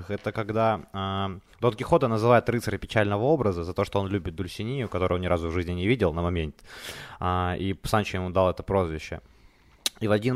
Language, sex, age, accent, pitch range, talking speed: Ukrainian, male, 20-39, native, 90-120 Hz, 205 wpm